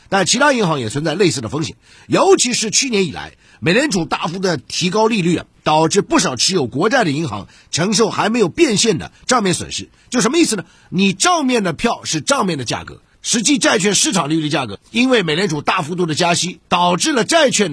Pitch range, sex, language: 165-245 Hz, male, Chinese